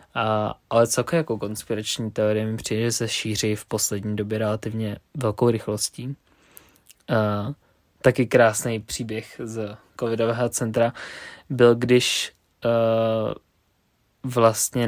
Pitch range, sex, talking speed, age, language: 115-130 Hz, male, 115 wpm, 20-39, Czech